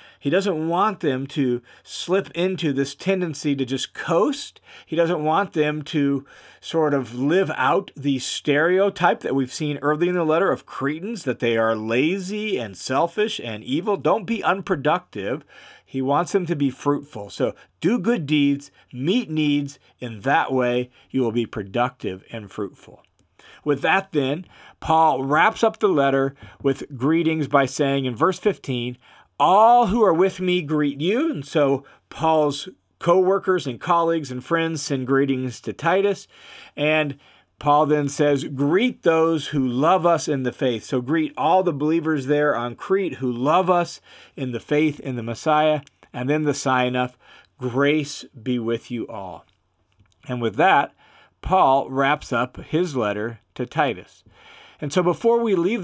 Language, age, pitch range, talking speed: English, 40-59, 130-175 Hz, 165 wpm